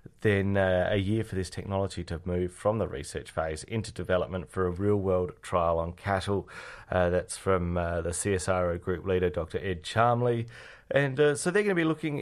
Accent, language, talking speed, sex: Australian, English, 195 wpm, male